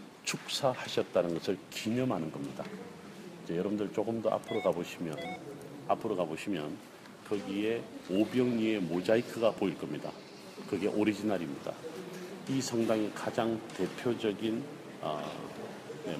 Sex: male